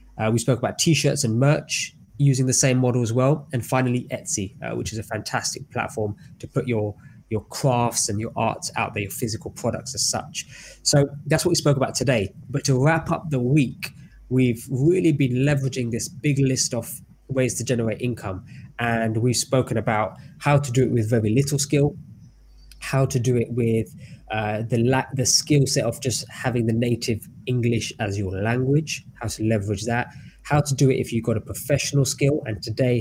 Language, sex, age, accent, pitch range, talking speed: English, male, 20-39, British, 115-145 Hz, 200 wpm